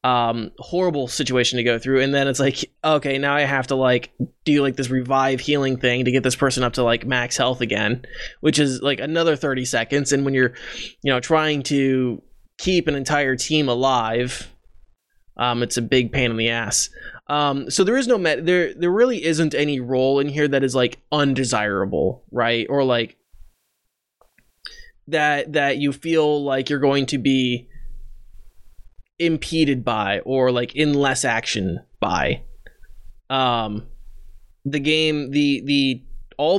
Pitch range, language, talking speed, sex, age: 120-150 Hz, English, 165 wpm, male, 20-39